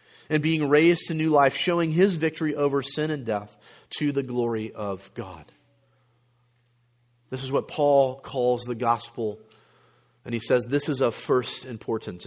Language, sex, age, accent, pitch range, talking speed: English, male, 40-59, American, 115-160 Hz, 160 wpm